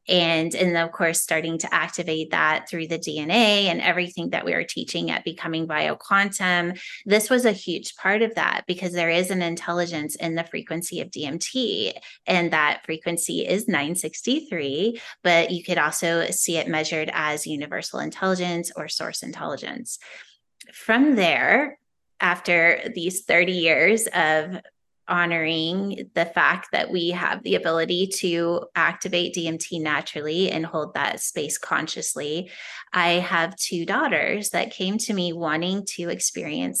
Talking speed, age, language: 145 wpm, 20-39, English